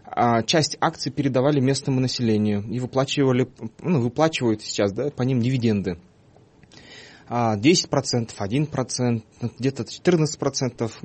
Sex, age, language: male, 20-39, Russian